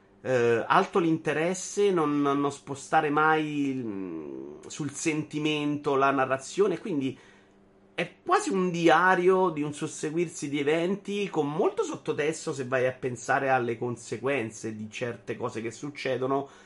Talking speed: 130 wpm